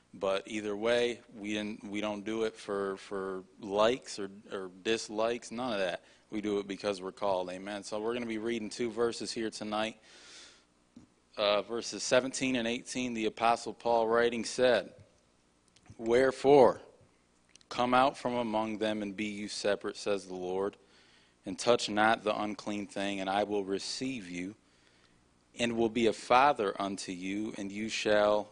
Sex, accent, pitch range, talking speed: male, American, 95-115 Hz, 165 wpm